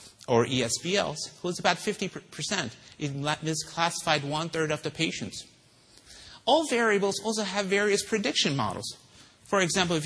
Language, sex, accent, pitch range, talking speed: English, male, American, 135-195 Hz, 145 wpm